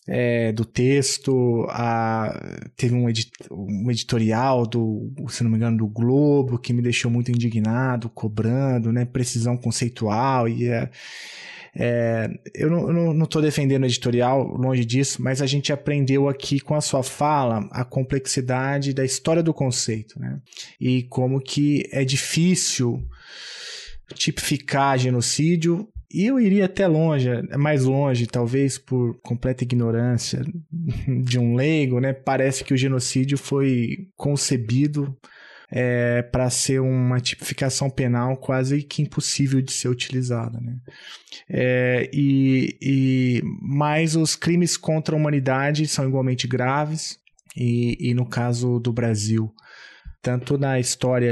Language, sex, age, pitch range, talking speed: Portuguese, male, 20-39, 120-140 Hz, 130 wpm